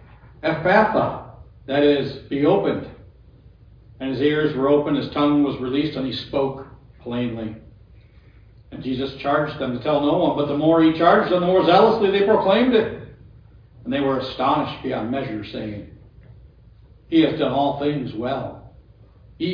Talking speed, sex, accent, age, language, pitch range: 155 wpm, male, American, 60-79, English, 115-150 Hz